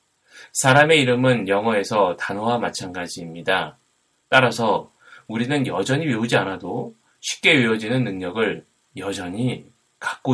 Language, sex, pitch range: Korean, male, 110-130 Hz